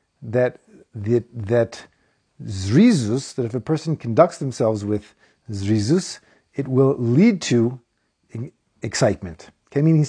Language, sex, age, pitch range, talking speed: English, male, 50-69, 115-150 Hz, 125 wpm